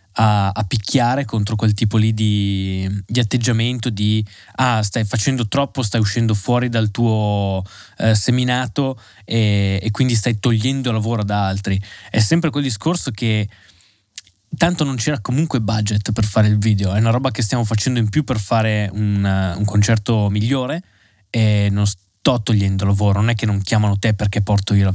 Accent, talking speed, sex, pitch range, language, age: native, 175 wpm, male, 105-120 Hz, Italian, 20-39